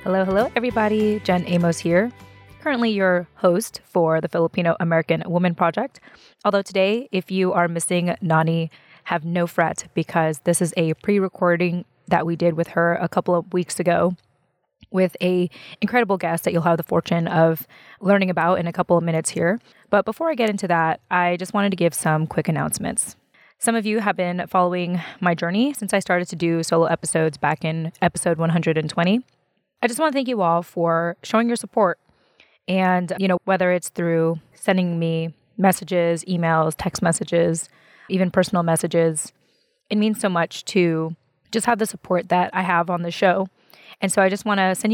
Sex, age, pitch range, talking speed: female, 20-39, 170-195 Hz, 185 wpm